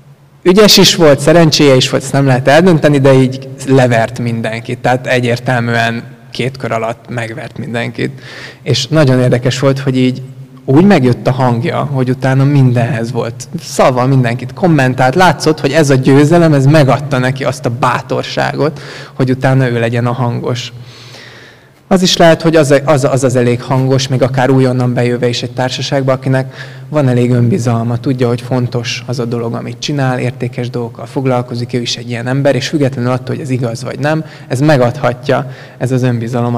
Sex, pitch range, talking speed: male, 125-145 Hz, 170 wpm